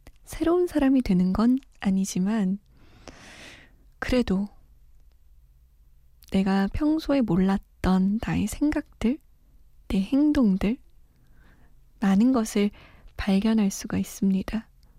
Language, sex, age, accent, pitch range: Korean, female, 20-39, native, 190-240 Hz